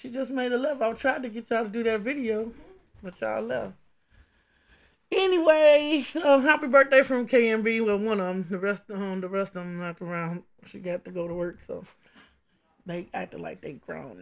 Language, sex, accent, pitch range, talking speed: English, male, American, 195-265 Hz, 210 wpm